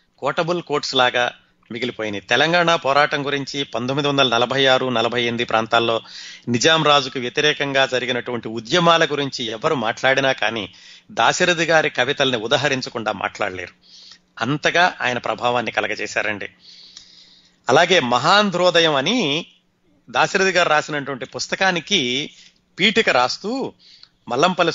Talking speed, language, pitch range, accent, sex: 100 wpm, Telugu, 120-160 Hz, native, male